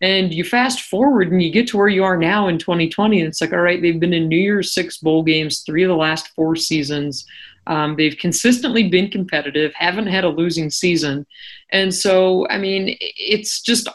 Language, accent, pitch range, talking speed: English, American, 160-185 Hz, 210 wpm